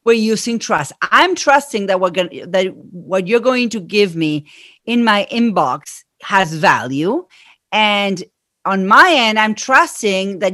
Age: 40-59